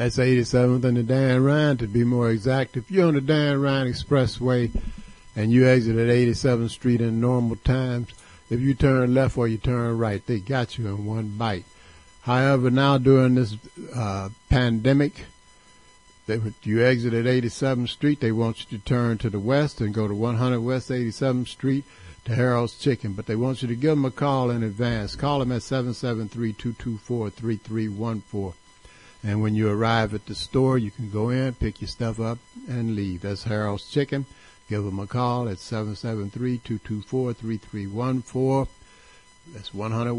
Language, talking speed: English, 165 wpm